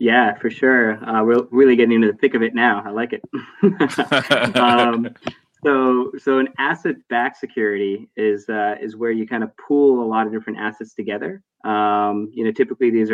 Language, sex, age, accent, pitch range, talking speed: English, male, 20-39, American, 105-120 Hz, 185 wpm